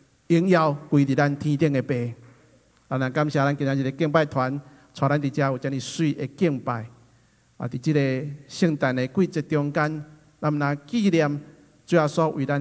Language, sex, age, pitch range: Chinese, male, 50-69, 135-160 Hz